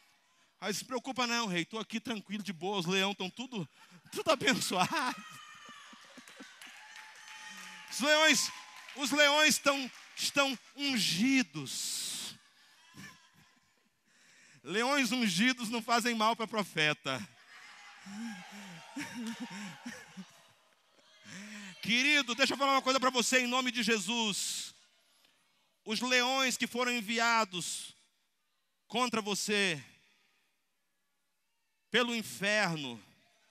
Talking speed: 90 wpm